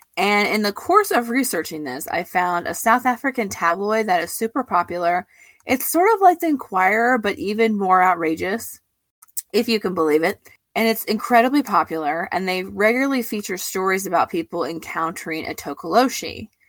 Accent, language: American, English